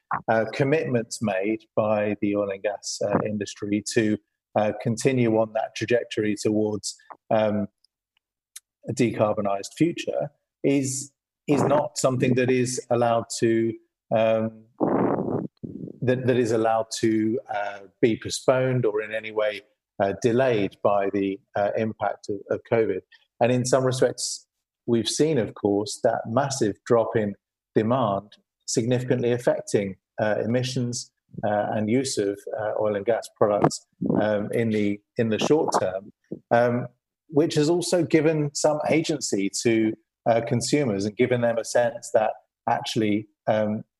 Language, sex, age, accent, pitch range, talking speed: English, male, 40-59, British, 105-130 Hz, 140 wpm